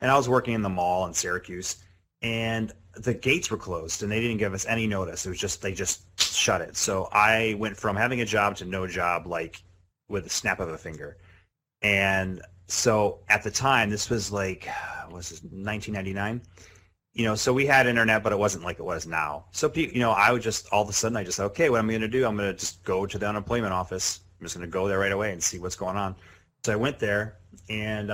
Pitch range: 90-105 Hz